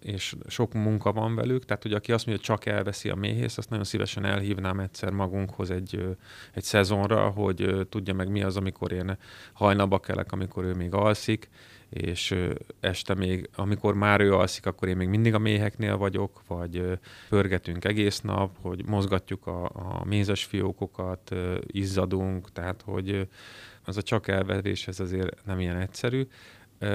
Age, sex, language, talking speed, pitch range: 30-49, male, Hungarian, 165 wpm, 95-110 Hz